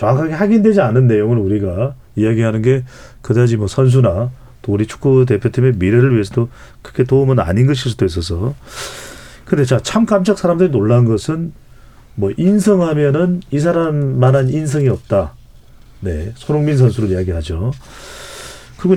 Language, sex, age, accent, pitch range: Korean, male, 40-59, native, 115-170 Hz